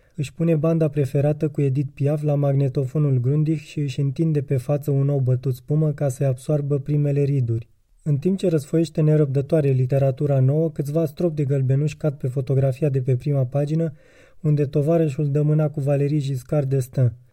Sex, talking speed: male, 170 wpm